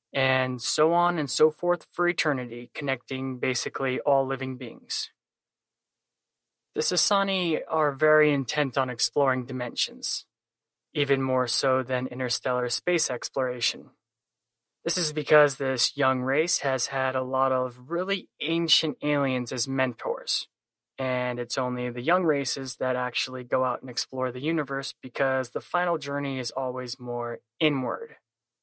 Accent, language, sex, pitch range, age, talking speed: American, English, male, 125-155 Hz, 20-39, 140 wpm